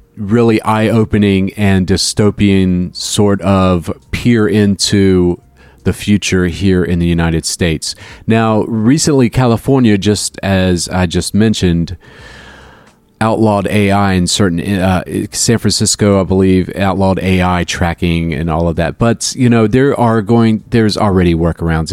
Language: English